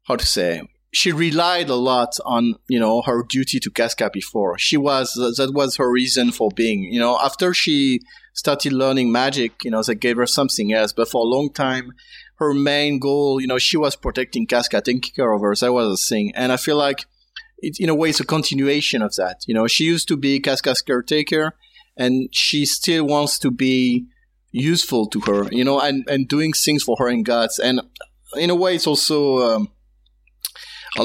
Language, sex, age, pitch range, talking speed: English, male, 30-49, 115-140 Hz, 205 wpm